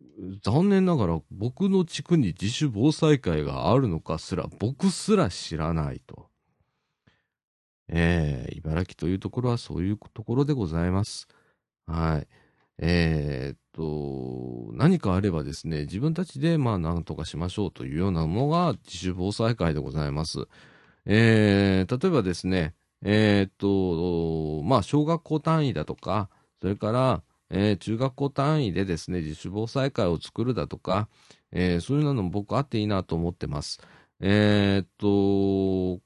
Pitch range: 85-135 Hz